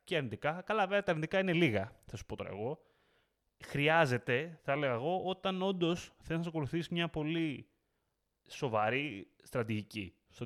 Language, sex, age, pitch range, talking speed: Greek, male, 20-39, 105-140 Hz, 155 wpm